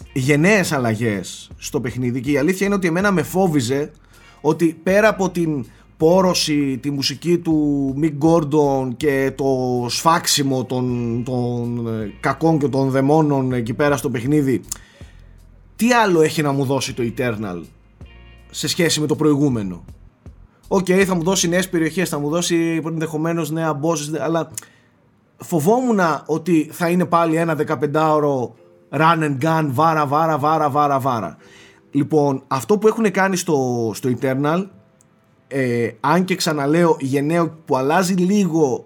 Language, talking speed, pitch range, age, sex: Greek, 140 wpm, 130-170 Hz, 30-49, male